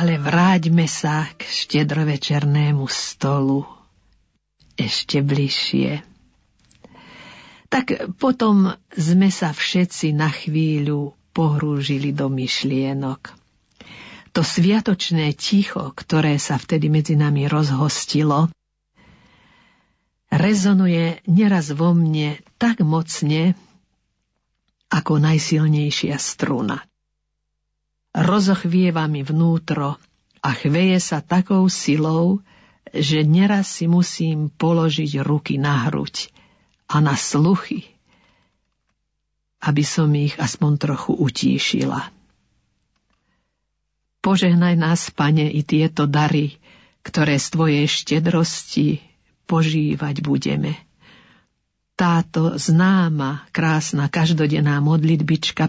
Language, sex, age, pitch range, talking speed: Slovak, female, 50-69, 145-175 Hz, 85 wpm